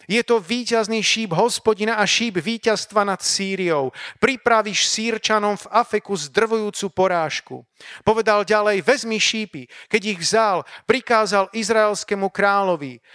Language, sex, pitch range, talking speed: Slovak, male, 185-220 Hz, 120 wpm